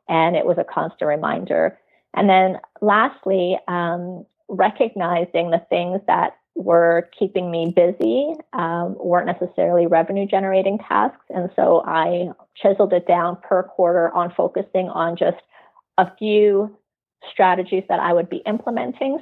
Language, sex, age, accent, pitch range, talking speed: English, female, 30-49, American, 170-195 Hz, 135 wpm